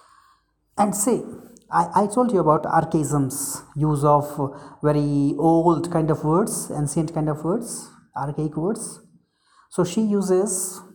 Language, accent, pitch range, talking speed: Hindi, native, 145-180 Hz, 130 wpm